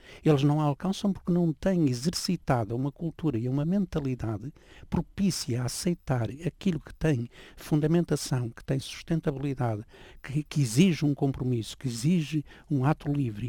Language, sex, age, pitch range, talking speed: Portuguese, male, 60-79, 125-170 Hz, 145 wpm